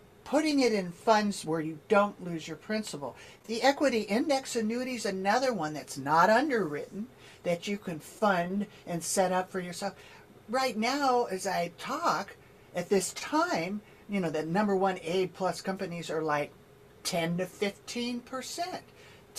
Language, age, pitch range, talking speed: English, 50-69, 165-220 Hz, 155 wpm